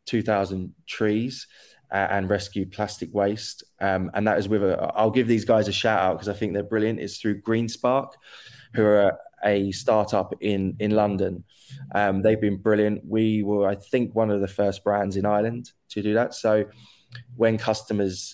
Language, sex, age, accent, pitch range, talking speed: English, male, 20-39, British, 95-110 Hz, 185 wpm